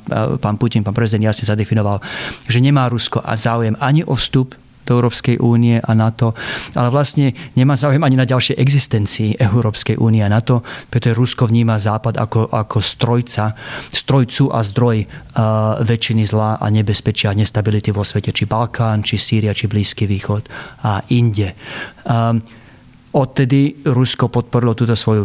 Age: 40-59